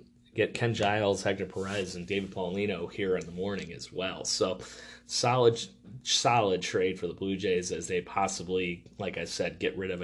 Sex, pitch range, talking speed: male, 90-110 Hz, 185 wpm